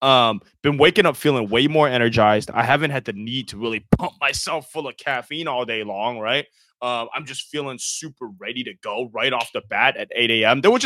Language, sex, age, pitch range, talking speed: English, male, 20-39, 110-150 Hz, 220 wpm